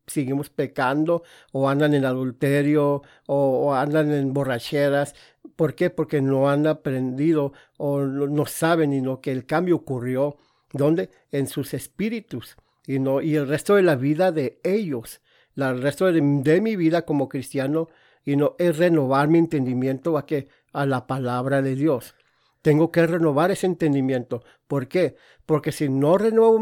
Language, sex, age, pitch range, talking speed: English, male, 50-69, 140-160 Hz, 165 wpm